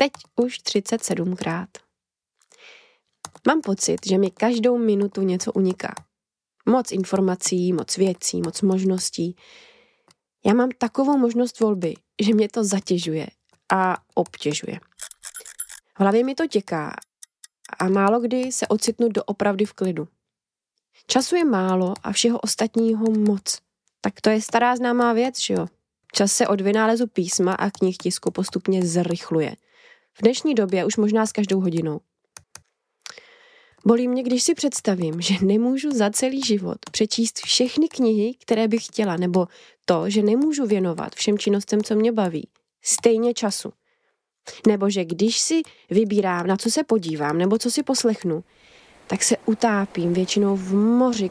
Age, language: 20-39, Czech